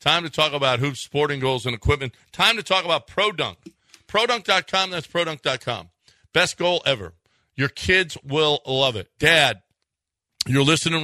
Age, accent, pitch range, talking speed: 50-69, American, 115-160 Hz, 150 wpm